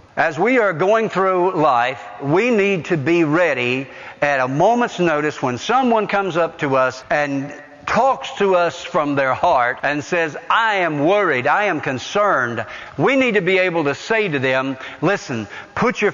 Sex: male